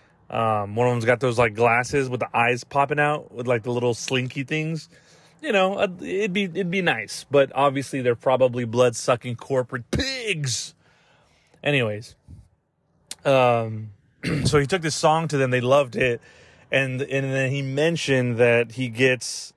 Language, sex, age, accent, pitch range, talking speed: English, male, 30-49, American, 120-150 Hz, 165 wpm